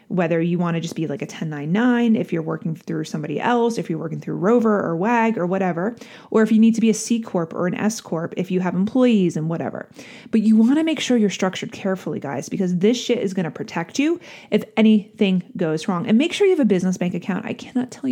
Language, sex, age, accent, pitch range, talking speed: English, female, 30-49, American, 185-225 Hz, 250 wpm